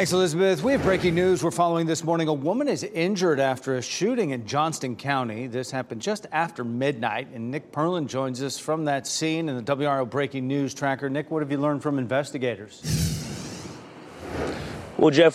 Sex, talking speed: male, 190 wpm